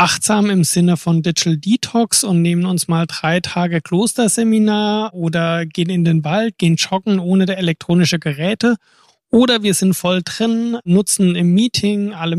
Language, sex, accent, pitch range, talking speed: German, male, German, 165-205 Hz, 160 wpm